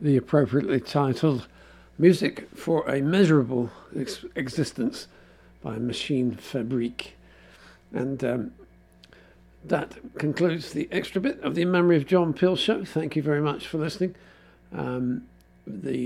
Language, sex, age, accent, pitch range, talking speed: English, male, 60-79, British, 105-145 Hz, 125 wpm